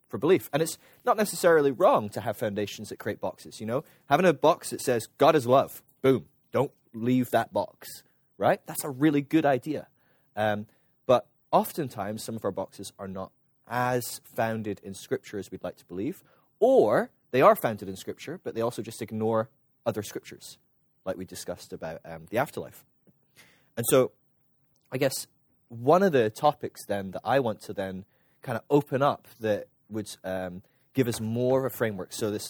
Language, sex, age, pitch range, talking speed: English, male, 20-39, 100-130 Hz, 185 wpm